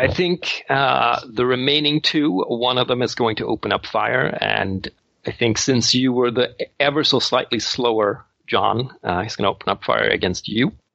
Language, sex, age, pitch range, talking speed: English, male, 40-59, 110-145 Hz, 195 wpm